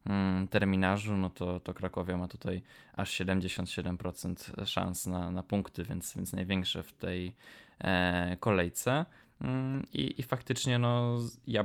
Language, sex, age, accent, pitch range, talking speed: Polish, male, 20-39, native, 90-105 Hz, 125 wpm